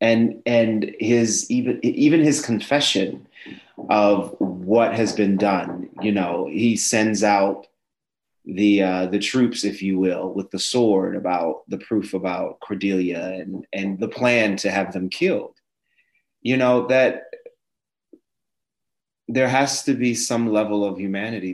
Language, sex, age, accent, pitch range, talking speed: English, male, 30-49, American, 95-115 Hz, 140 wpm